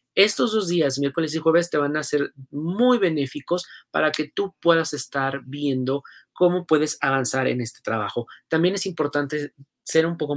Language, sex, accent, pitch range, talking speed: Spanish, male, Mexican, 135-170 Hz, 175 wpm